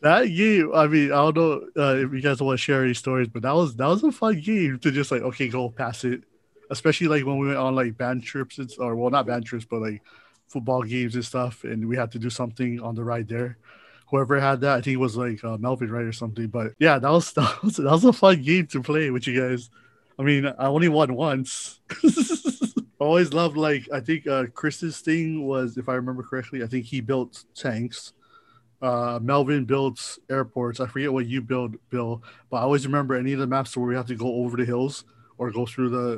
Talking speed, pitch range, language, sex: 240 wpm, 120-145 Hz, English, male